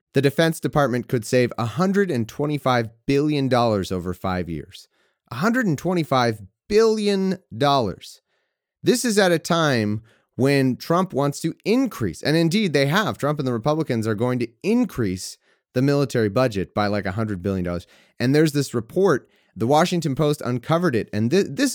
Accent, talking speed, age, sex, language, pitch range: American, 145 wpm, 30-49, male, English, 105-155 Hz